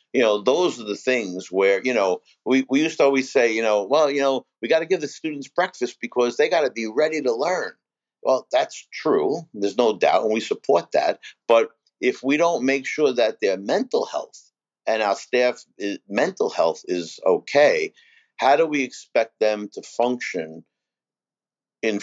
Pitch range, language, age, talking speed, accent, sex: 110-155 Hz, English, 50-69, 190 wpm, American, male